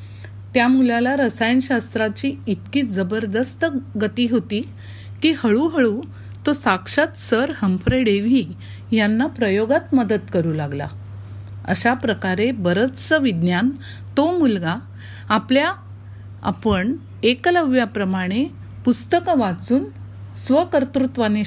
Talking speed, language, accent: 85 wpm, Marathi, native